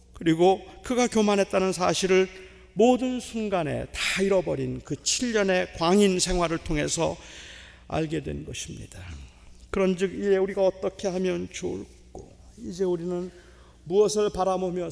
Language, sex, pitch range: Korean, male, 115-175 Hz